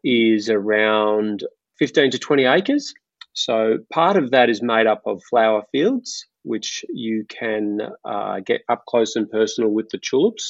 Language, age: Dutch, 30-49